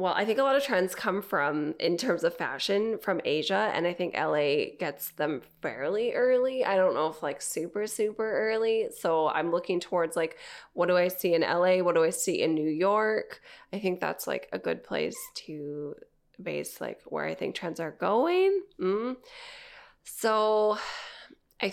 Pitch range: 170-240 Hz